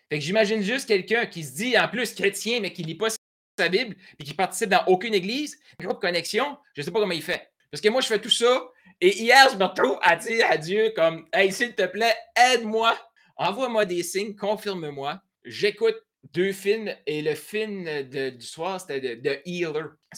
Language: French